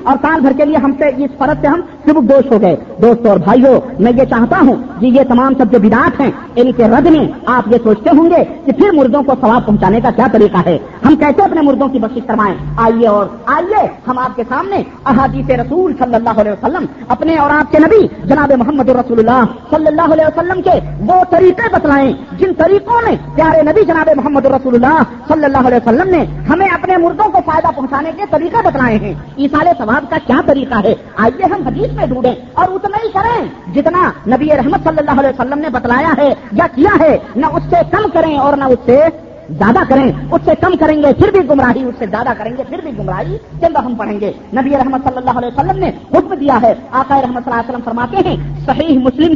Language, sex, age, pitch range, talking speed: Urdu, female, 40-59, 250-320 Hz, 205 wpm